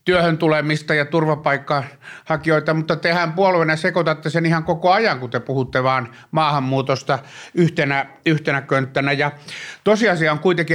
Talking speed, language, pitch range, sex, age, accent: 140 wpm, Finnish, 135-165 Hz, male, 60-79, native